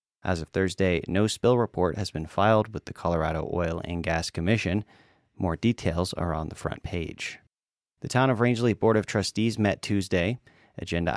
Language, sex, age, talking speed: English, male, 30-49, 175 wpm